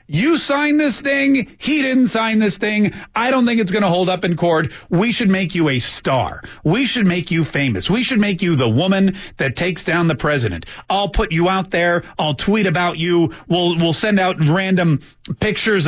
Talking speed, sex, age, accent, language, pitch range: 210 wpm, male, 40-59, American, English, 155-205 Hz